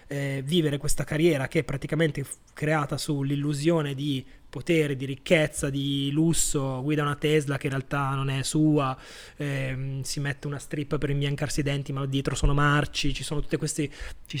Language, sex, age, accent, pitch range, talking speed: Italian, male, 20-39, native, 135-160 Hz, 180 wpm